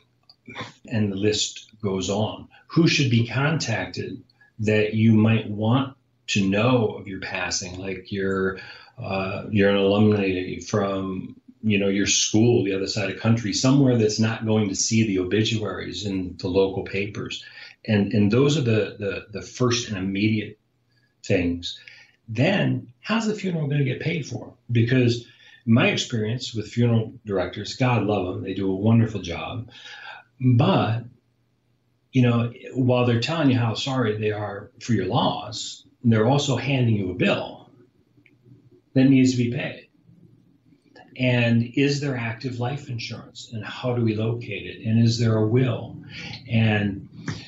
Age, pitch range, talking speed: 40-59, 100-125 Hz, 155 wpm